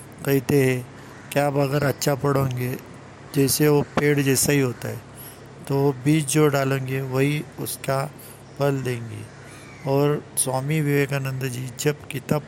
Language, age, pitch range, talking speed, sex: Hindi, 50-69, 130-150 Hz, 130 wpm, male